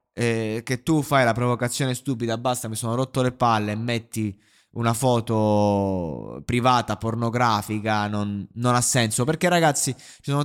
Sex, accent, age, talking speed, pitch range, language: male, native, 20-39, 150 wpm, 115-135 Hz, Italian